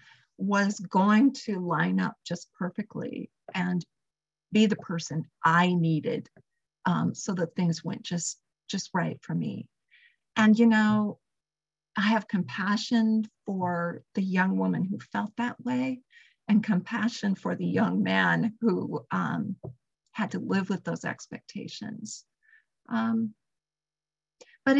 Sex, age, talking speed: female, 50-69, 130 wpm